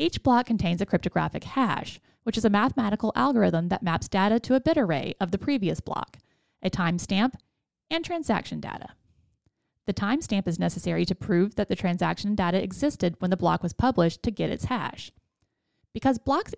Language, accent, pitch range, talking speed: English, American, 180-250 Hz, 175 wpm